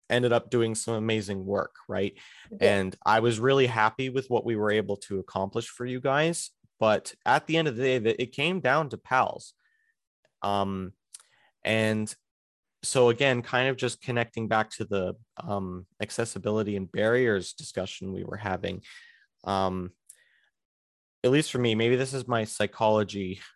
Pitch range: 105-135 Hz